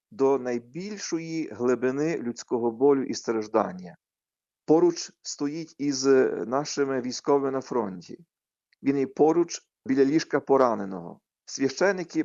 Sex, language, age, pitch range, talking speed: male, Ukrainian, 40-59, 130-165 Hz, 105 wpm